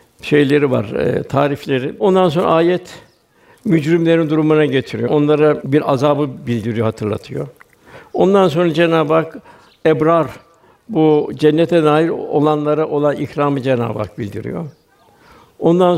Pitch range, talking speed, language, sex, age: 145-165 Hz, 110 wpm, Turkish, male, 60-79